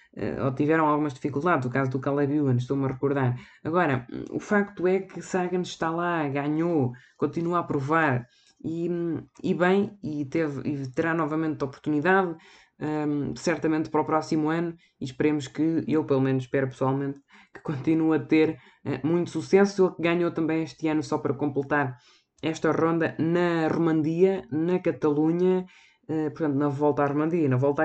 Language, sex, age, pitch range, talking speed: Portuguese, female, 20-39, 145-165 Hz, 160 wpm